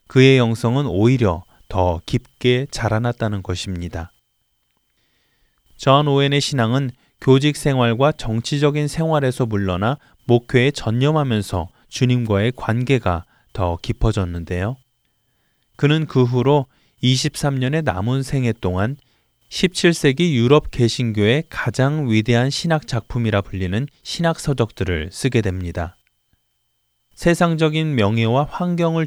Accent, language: native, Korean